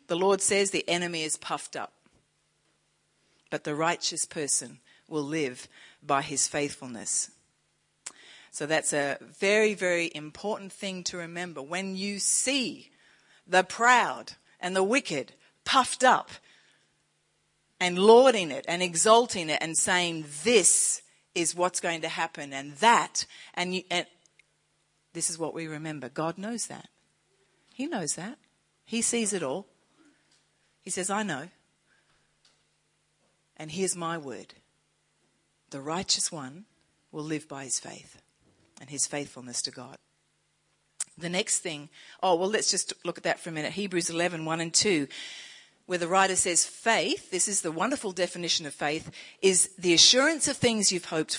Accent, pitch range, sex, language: Australian, 160-200 Hz, female, English